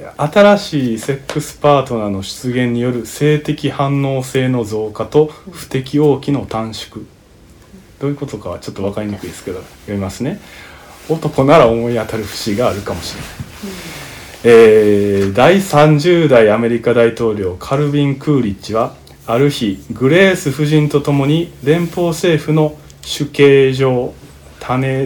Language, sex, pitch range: Japanese, male, 110-150 Hz